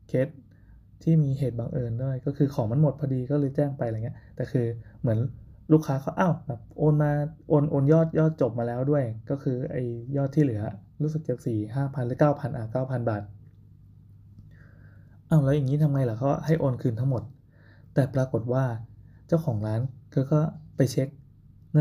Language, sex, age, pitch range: Thai, male, 20-39, 110-145 Hz